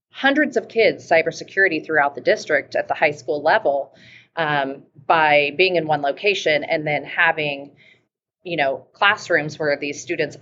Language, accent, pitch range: English, American, 145-185 Hz